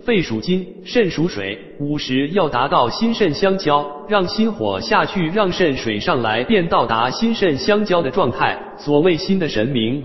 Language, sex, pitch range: Chinese, male, 130-200 Hz